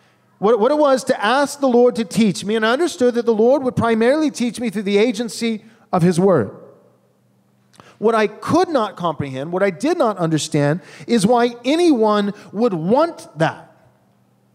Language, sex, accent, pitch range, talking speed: English, male, American, 170-265 Hz, 175 wpm